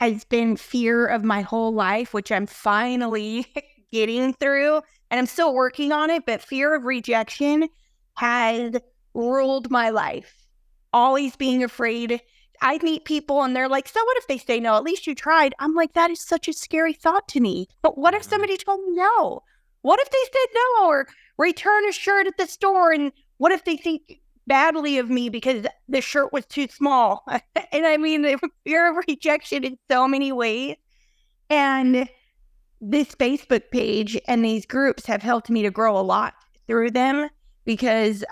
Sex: female